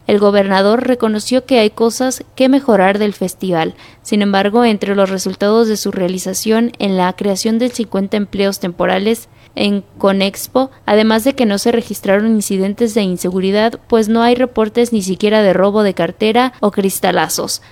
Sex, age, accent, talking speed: female, 20-39, Mexican, 165 wpm